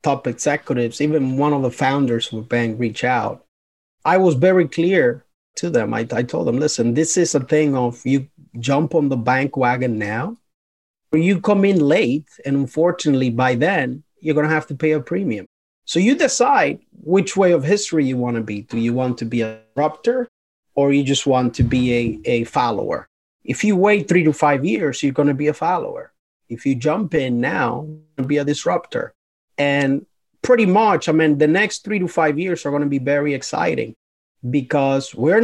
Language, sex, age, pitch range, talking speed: English, male, 30-49, 130-170 Hz, 205 wpm